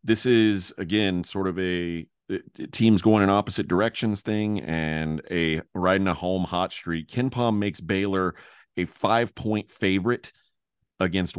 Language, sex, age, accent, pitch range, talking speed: English, male, 30-49, American, 90-110 Hz, 140 wpm